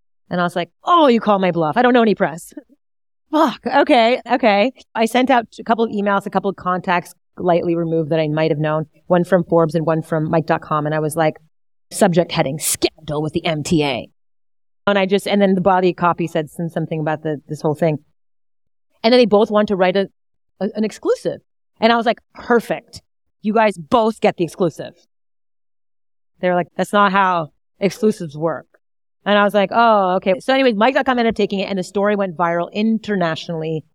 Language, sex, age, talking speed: English, female, 30-49, 205 wpm